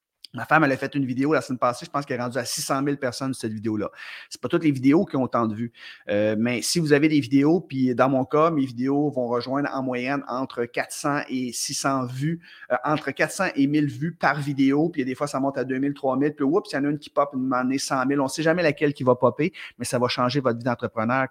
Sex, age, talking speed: male, 30-49, 275 wpm